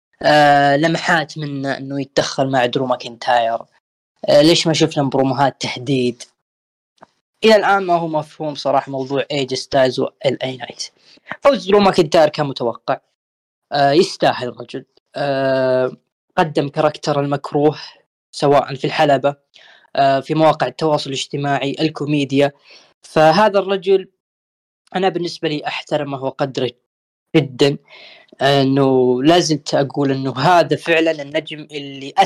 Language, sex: Arabic, female